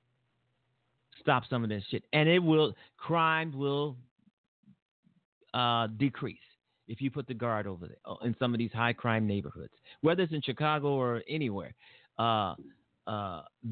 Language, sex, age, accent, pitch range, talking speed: English, male, 50-69, American, 120-155 Hz, 150 wpm